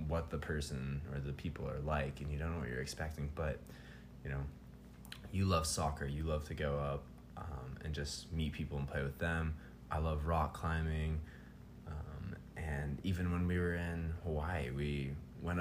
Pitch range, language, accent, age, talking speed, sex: 70-85 Hz, English, American, 20-39, 190 wpm, male